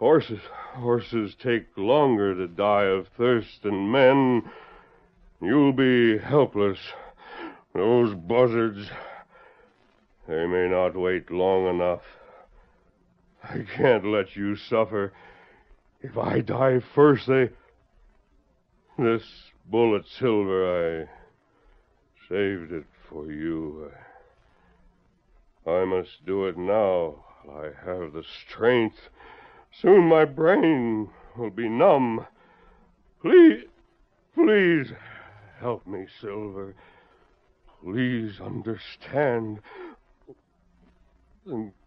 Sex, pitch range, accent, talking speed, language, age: male, 85-115 Hz, American, 90 wpm, English, 60-79